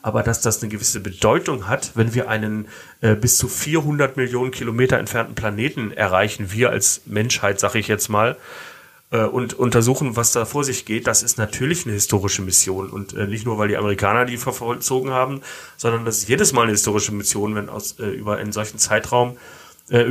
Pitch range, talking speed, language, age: 100-125 Hz, 195 wpm, German, 30-49